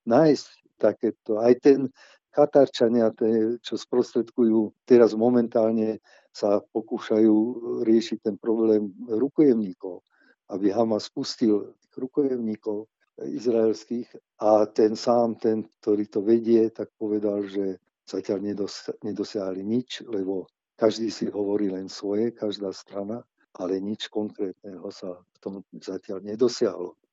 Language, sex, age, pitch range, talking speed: Slovak, male, 50-69, 105-125 Hz, 115 wpm